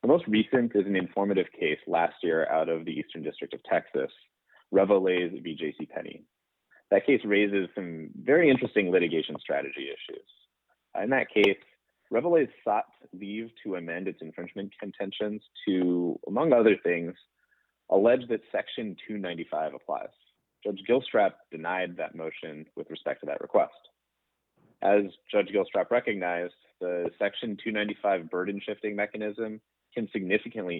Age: 30-49